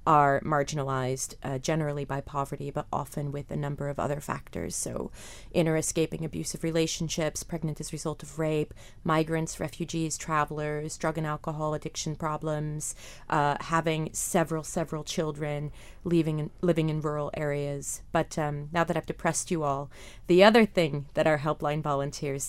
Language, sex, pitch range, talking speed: English, female, 145-170 Hz, 155 wpm